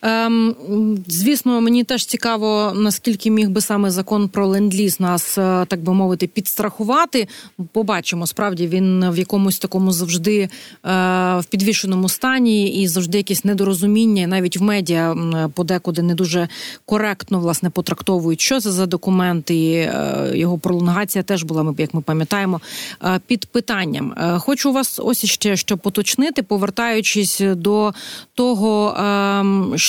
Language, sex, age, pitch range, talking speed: Ukrainian, female, 30-49, 185-220 Hz, 135 wpm